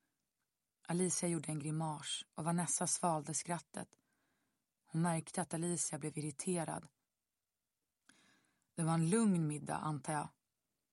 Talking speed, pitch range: 115 wpm, 165-200 Hz